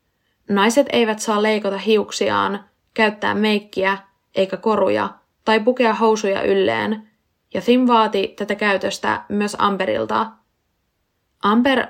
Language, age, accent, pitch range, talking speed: Finnish, 20-39, native, 195-225 Hz, 105 wpm